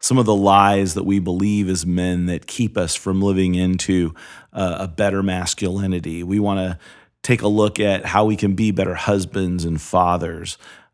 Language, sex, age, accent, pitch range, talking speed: English, male, 40-59, American, 95-115 Hz, 175 wpm